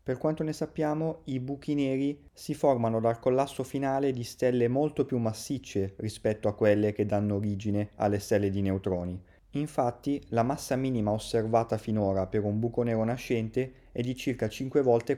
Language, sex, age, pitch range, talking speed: Italian, male, 30-49, 105-130 Hz, 170 wpm